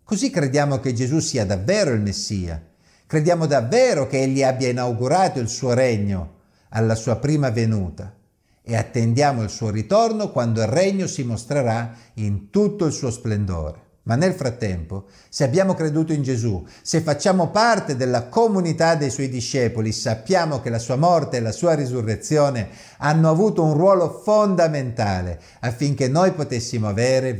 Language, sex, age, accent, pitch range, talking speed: Italian, male, 50-69, native, 110-165 Hz, 155 wpm